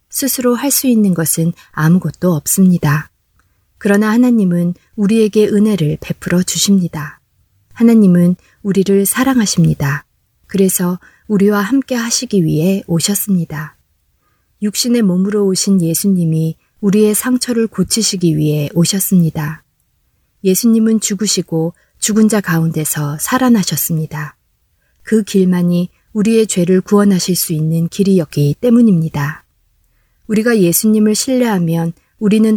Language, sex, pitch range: Korean, female, 160-210 Hz